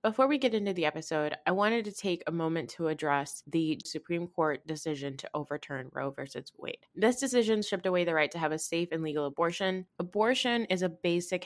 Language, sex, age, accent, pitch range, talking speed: English, female, 20-39, American, 160-195 Hz, 210 wpm